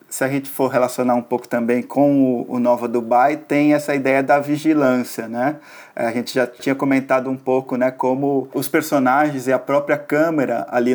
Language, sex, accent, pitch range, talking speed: Portuguese, male, Brazilian, 125-140 Hz, 185 wpm